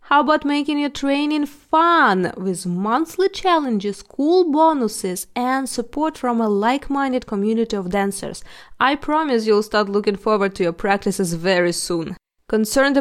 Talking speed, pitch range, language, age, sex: 145 wpm, 220-305 Hz, English, 20-39, female